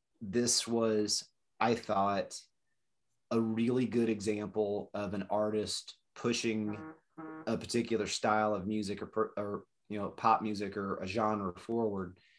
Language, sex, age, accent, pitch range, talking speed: English, male, 30-49, American, 100-110 Hz, 130 wpm